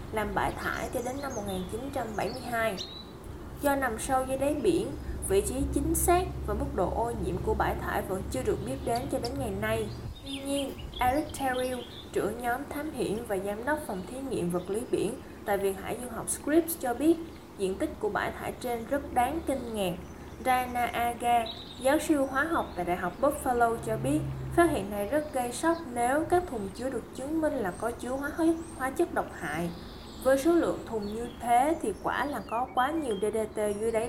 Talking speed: 205 wpm